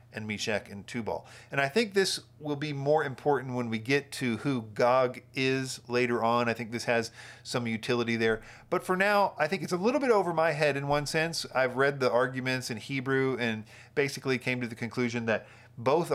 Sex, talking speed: male, 210 wpm